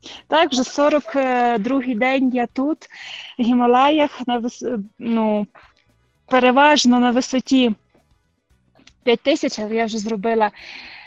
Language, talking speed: Ukrainian, 80 wpm